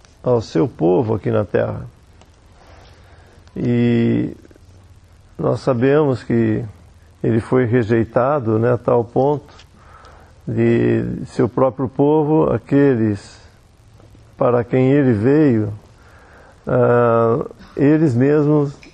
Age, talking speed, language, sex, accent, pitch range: 50-69, 90 wpm, English, male, Brazilian, 110-135 Hz